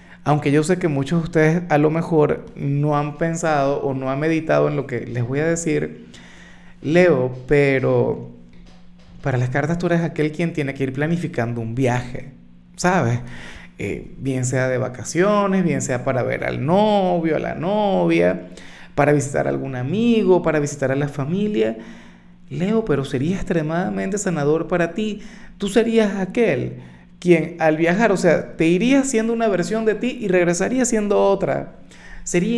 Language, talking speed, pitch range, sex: Spanish, 165 wpm, 135-175 Hz, male